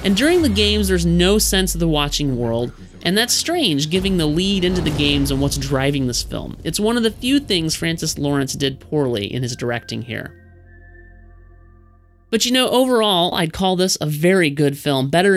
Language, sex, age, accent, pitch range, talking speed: English, male, 30-49, American, 130-175 Hz, 200 wpm